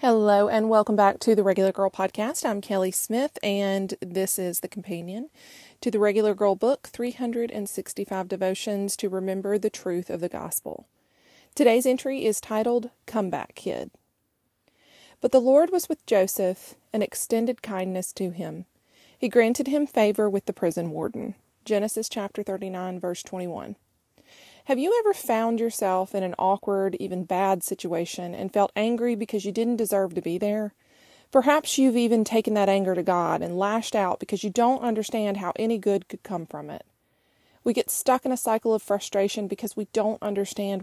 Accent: American